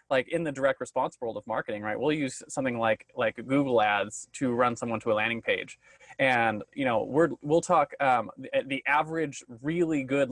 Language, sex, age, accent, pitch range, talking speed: English, male, 20-39, American, 130-175 Hz, 205 wpm